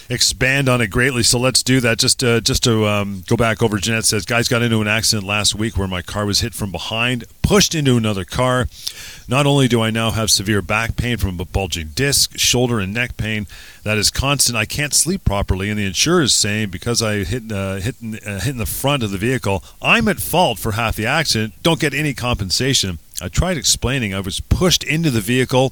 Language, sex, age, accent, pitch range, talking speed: English, male, 40-59, American, 100-125 Hz, 230 wpm